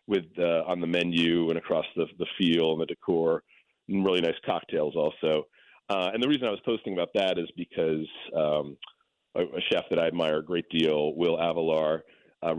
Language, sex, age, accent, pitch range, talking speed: English, male, 40-59, American, 80-115 Hz, 195 wpm